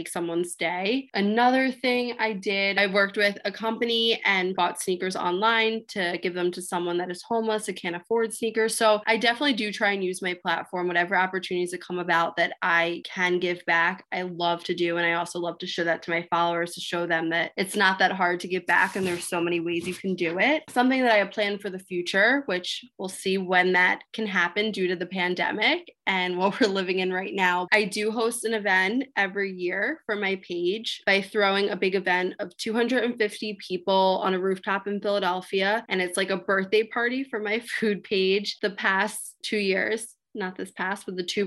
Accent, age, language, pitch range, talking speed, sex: American, 20-39, English, 180-210 Hz, 215 wpm, female